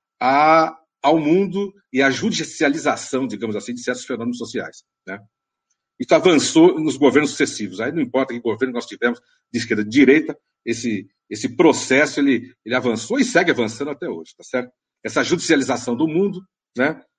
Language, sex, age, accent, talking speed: Portuguese, male, 60-79, Brazilian, 160 wpm